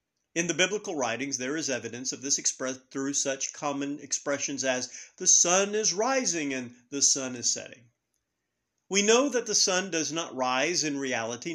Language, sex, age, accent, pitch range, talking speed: English, male, 50-69, American, 140-195 Hz, 175 wpm